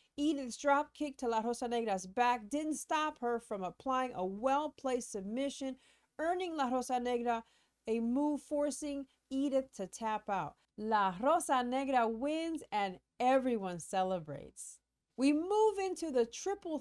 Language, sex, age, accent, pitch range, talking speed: English, female, 40-59, American, 215-280 Hz, 140 wpm